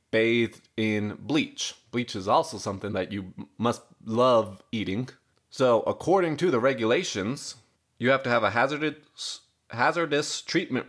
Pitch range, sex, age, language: 105-130 Hz, male, 20-39, English